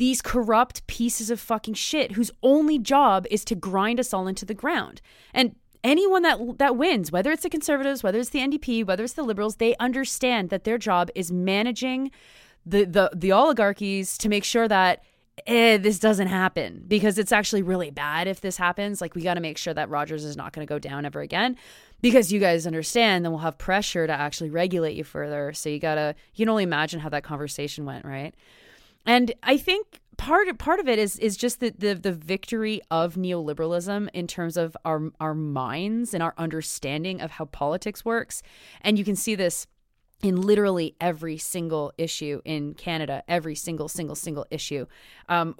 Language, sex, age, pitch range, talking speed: English, female, 20-39, 165-225 Hz, 195 wpm